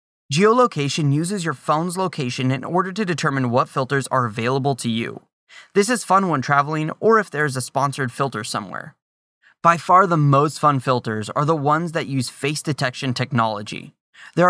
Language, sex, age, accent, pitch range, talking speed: English, male, 20-39, American, 125-170 Hz, 180 wpm